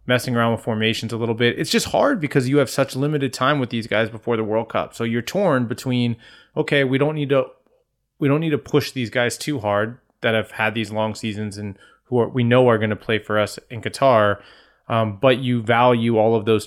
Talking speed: 240 wpm